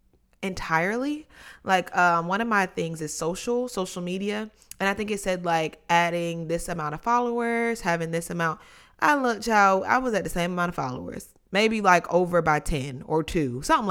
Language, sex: English, female